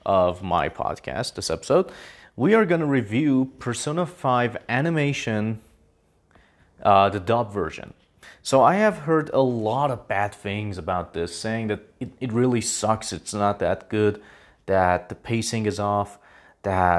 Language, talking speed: English, 155 wpm